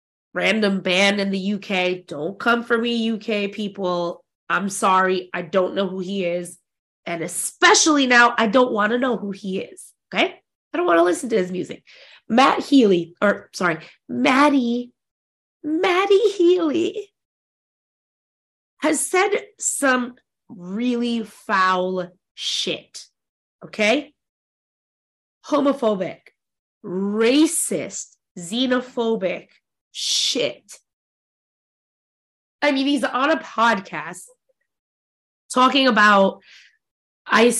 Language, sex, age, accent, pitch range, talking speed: English, female, 20-39, American, 185-255 Hz, 105 wpm